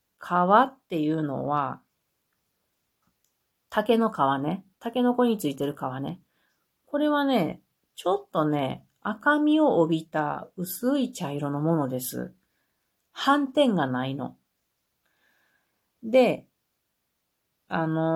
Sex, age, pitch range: female, 40-59, 150-225 Hz